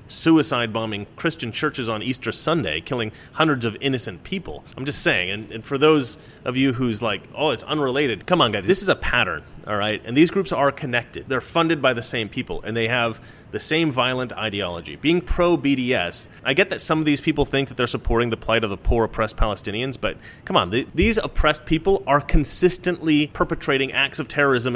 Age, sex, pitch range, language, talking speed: 30-49, male, 115-150 Hz, English, 205 wpm